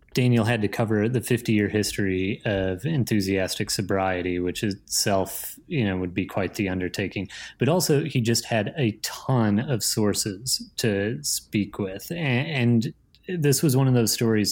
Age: 30-49